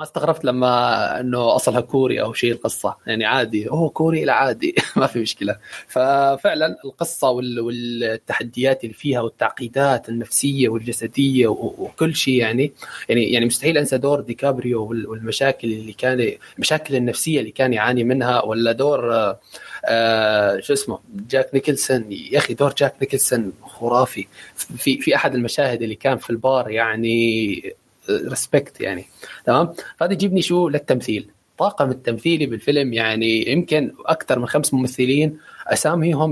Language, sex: Arabic, male